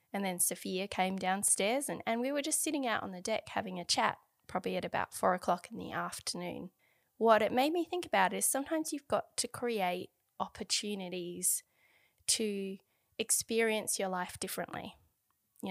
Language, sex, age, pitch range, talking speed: English, female, 20-39, 180-235 Hz, 170 wpm